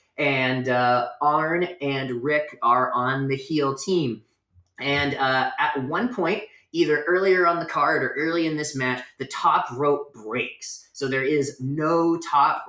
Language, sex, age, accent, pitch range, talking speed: English, male, 30-49, American, 130-160 Hz, 160 wpm